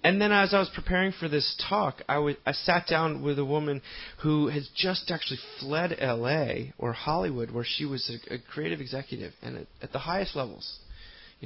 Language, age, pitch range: English, 30-49, 120-155 Hz